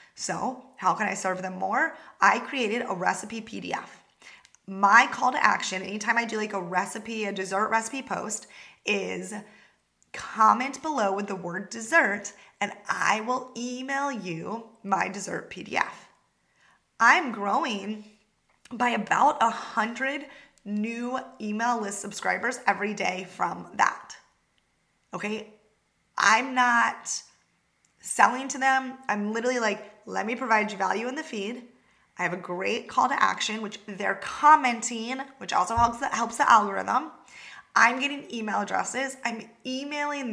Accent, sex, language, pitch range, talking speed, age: American, female, English, 200-255 Hz, 140 wpm, 20-39